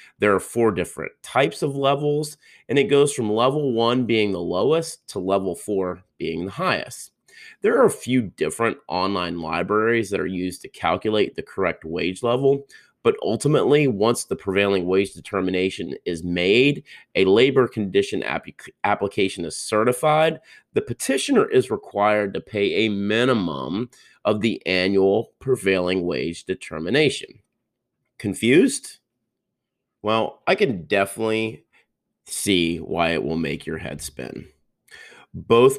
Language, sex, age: English, male, 30-49